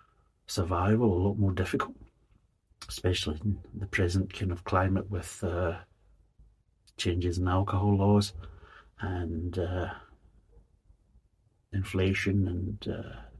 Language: English